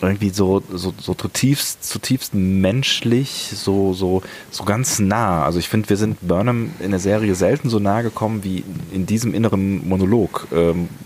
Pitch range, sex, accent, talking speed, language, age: 85-110 Hz, male, German, 165 wpm, German, 30-49